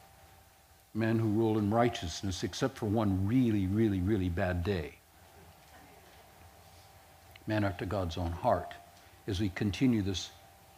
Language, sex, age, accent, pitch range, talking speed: English, male, 60-79, American, 90-135 Hz, 120 wpm